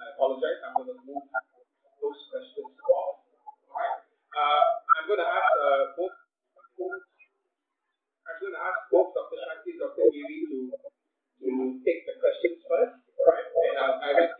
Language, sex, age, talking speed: English, male, 30-49, 165 wpm